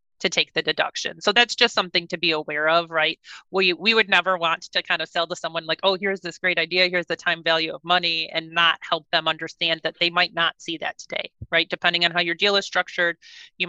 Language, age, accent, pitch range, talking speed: English, 30-49, American, 165-195 Hz, 250 wpm